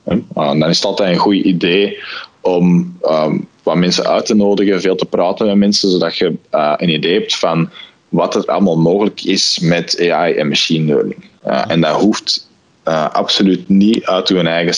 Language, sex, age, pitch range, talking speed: Dutch, male, 20-39, 85-105 Hz, 185 wpm